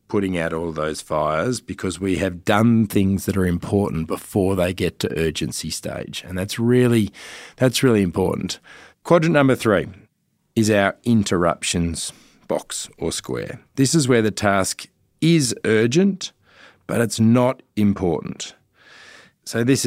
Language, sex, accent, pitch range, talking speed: English, male, Australian, 100-130 Hz, 140 wpm